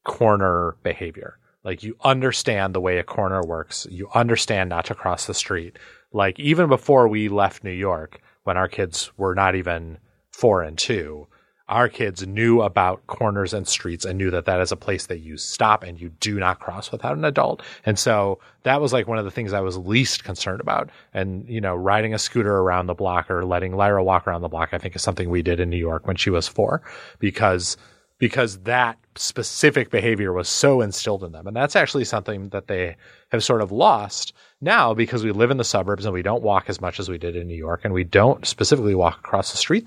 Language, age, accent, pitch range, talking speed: English, 30-49, American, 90-115 Hz, 225 wpm